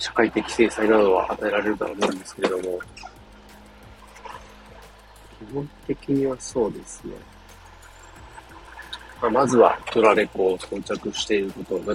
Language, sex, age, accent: Japanese, male, 40-59, native